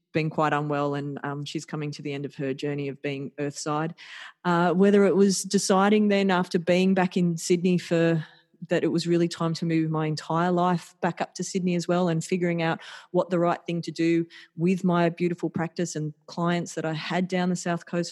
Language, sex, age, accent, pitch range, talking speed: English, female, 30-49, Australian, 160-195 Hz, 220 wpm